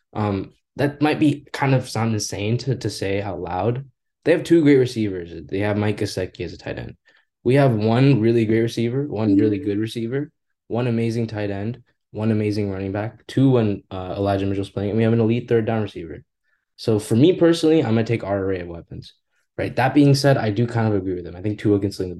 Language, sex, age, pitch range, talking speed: English, male, 10-29, 100-125 Hz, 230 wpm